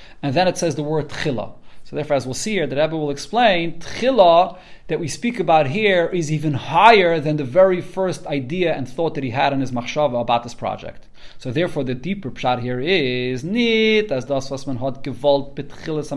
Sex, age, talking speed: male, 30-49, 180 wpm